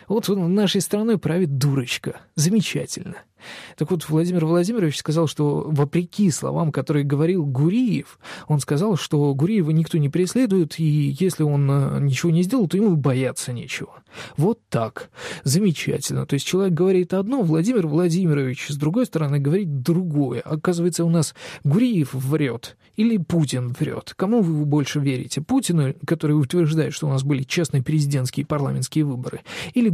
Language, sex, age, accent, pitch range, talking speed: Russian, male, 20-39, native, 140-175 Hz, 150 wpm